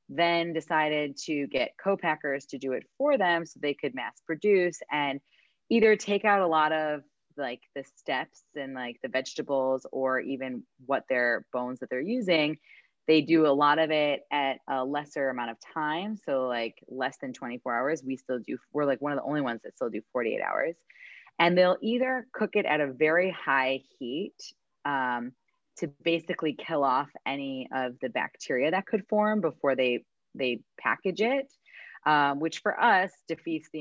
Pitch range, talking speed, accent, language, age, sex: 135-185 Hz, 180 wpm, American, English, 20-39, female